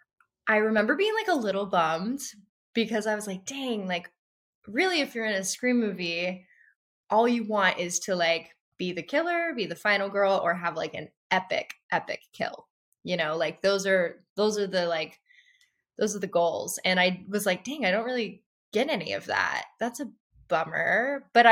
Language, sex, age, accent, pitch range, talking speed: English, female, 20-39, American, 175-225 Hz, 190 wpm